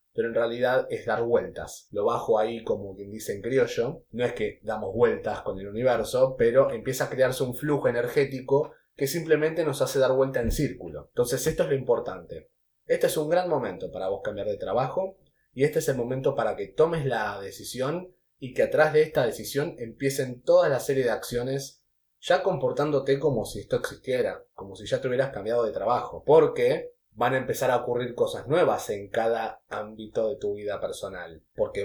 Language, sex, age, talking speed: Spanish, male, 20-39, 195 wpm